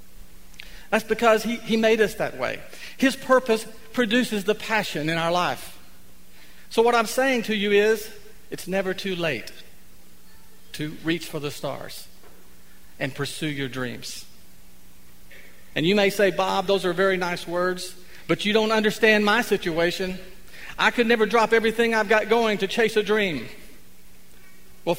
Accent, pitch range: American, 170-220 Hz